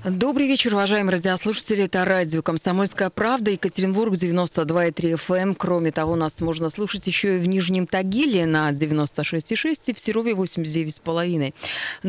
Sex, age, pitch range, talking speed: female, 20-39, 150-195 Hz, 135 wpm